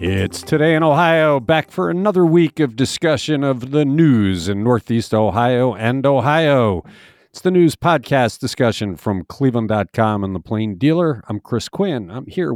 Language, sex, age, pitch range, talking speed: English, male, 50-69, 100-155 Hz, 160 wpm